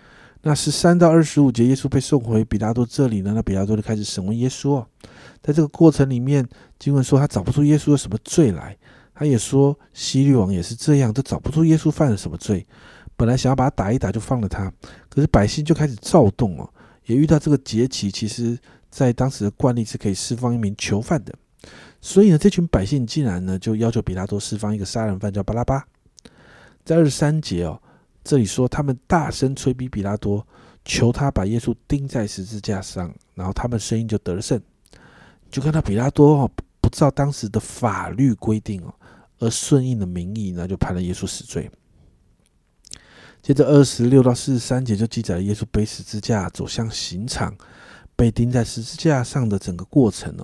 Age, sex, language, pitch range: 50-69, male, Chinese, 105-140 Hz